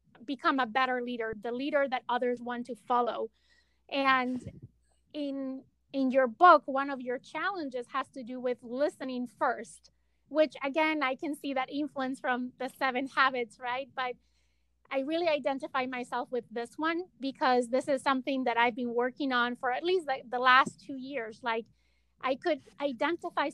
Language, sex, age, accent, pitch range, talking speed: English, female, 30-49, American, 245-285 Hz, 170 wpm